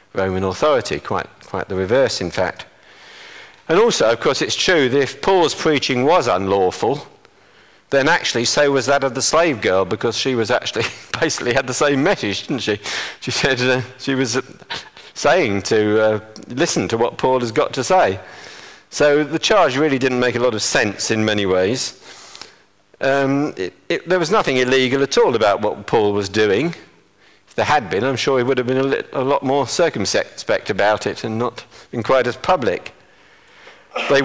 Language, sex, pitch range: English, male, 100-145 Hz